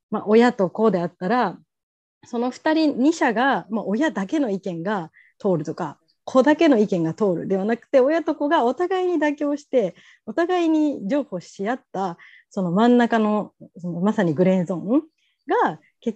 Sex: female